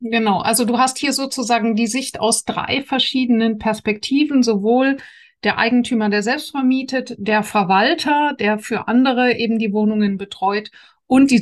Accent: German